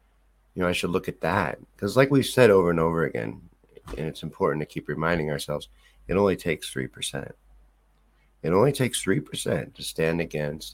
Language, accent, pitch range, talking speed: English, American, 75-90 Hz, 190 wpm